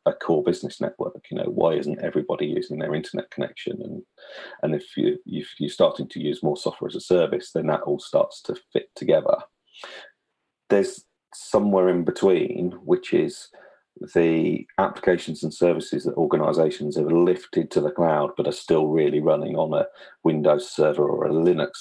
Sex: male